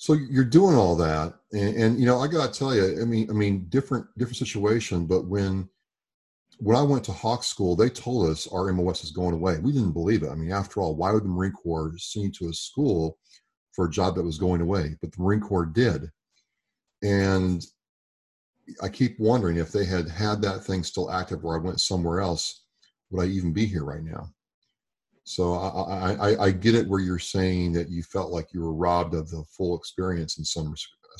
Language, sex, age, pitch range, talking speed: English, male, 40-59, 85-105 Hz, 215 wpm